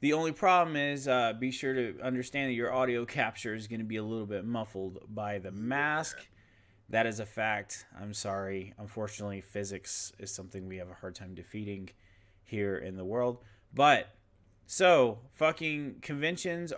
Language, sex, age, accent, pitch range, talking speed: English, male, 30-49, American, 100-125 Hz, 170 wpm